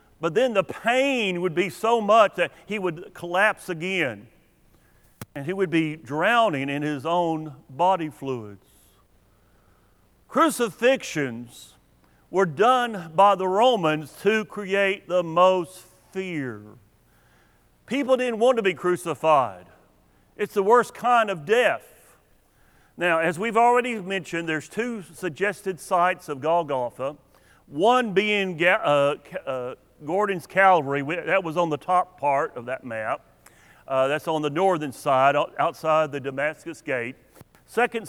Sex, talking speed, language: male, 130 wpm, English